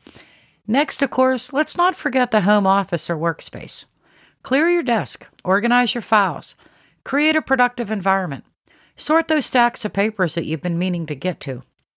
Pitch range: 180-255 Hz